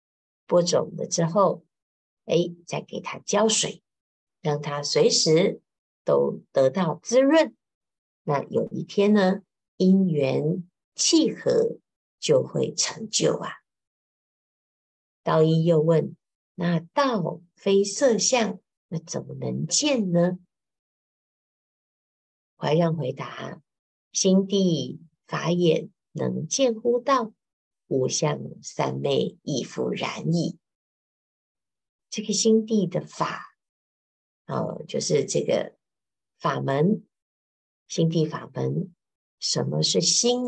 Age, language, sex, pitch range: 50-69, Chinese, female, 160-220 Hz